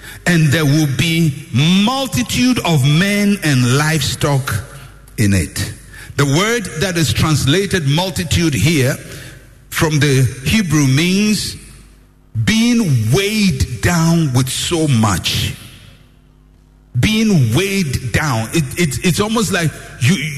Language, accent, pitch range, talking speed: English, Nigerian, 130-195 Hz, 110 wpm